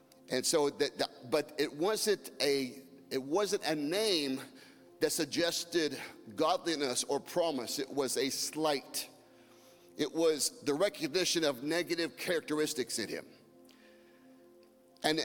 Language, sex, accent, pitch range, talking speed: English, male, American, 130-180 Hz, 120 wpm